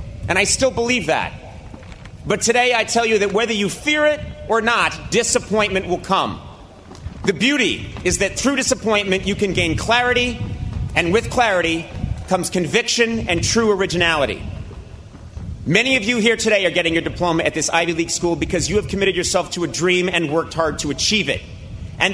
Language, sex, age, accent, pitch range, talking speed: English, male, 40-59, American, 140-205 Hz, 180 wpm